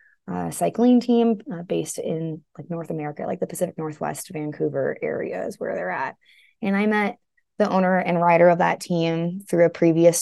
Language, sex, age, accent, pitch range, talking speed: English, female, 20-39, American, 165-190 Hz, 190 wpm